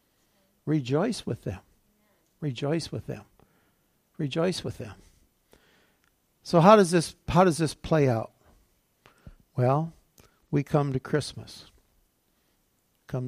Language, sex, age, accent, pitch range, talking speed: English, male, 60-79, American, 130-165 Hz, 110 wpm